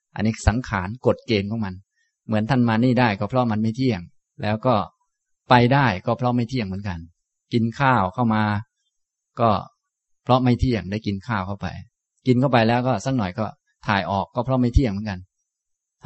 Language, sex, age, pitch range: Thai, male, 20-39, 100-130 Hz